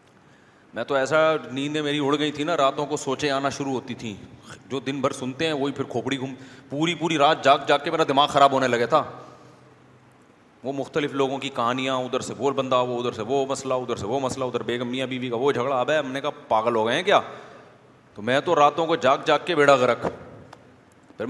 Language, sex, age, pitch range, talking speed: Urdu, male, 30-49, 125-145 Hz, 230 wpm